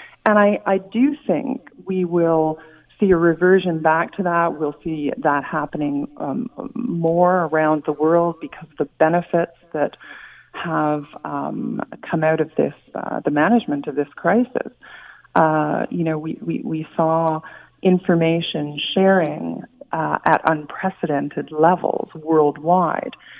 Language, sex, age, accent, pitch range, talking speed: English, female, 40-59, American, 155-185 Hz, 135 wpm